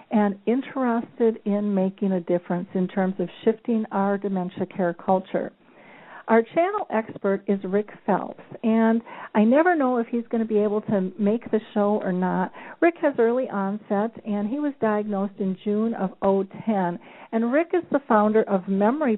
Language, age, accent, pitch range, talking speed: English, 50-69, American, 195-235 Hz, 170 wpm